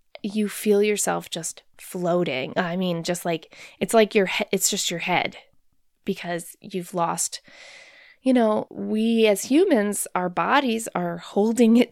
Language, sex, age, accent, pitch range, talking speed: English, female, 20-39, American, 185-225 Hz, 150 wpm